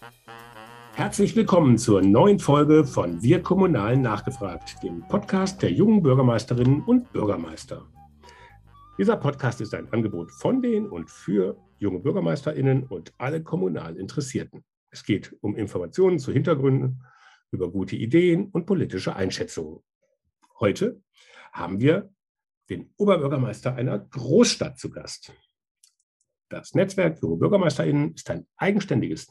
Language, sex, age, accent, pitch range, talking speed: German, male, 60-79, German, 120-180 Hz, 120 wpm